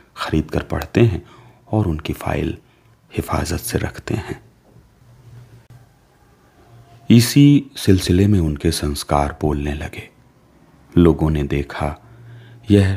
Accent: native